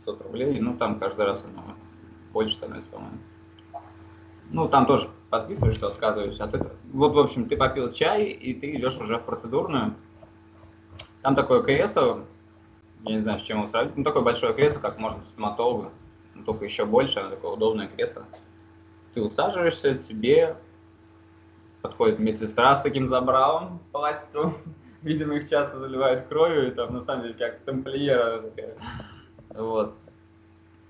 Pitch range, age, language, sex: 110-135 Hz, 20-39, Russian, male